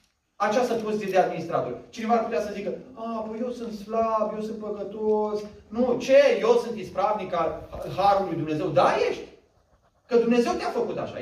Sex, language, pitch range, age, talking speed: male, Romanian, 205-275 Hz, 30-49, 170 wpm